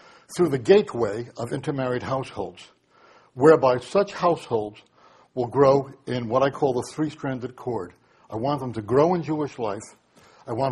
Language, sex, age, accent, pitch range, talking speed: English, male, 60-79, American, 120-150 Hz, 155 wpm